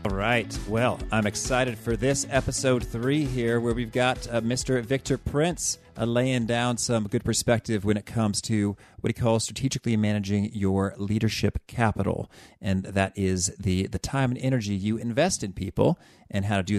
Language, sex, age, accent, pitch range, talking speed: English, male, 40-59, American, 100-125 Hz, 180 wpm